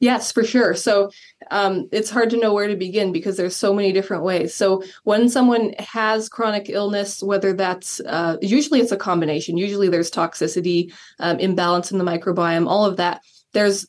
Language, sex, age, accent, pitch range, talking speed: English, female, 20-39, American, 180-210 Hz, 185 wpm